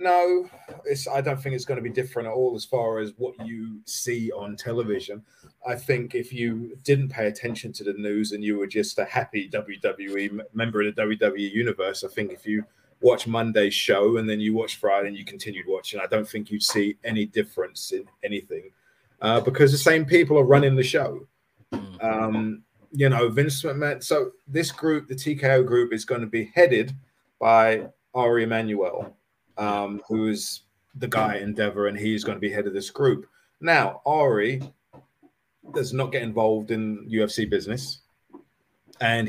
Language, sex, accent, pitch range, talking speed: English, male, British, 105-135 Hz, 180 wpm